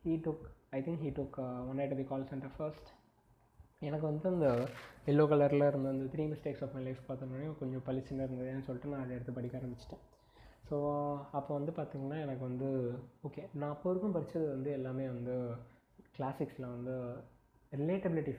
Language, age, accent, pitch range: Tamil, 20-39, native, 125-145 Hz